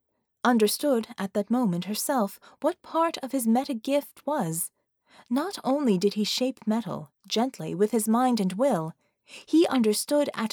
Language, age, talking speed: English, 30-49, 150 wpm